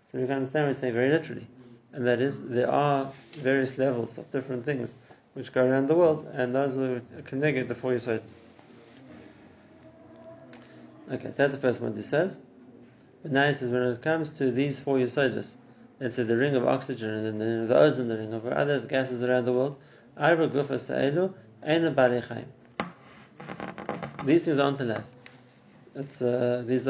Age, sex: 30-49, male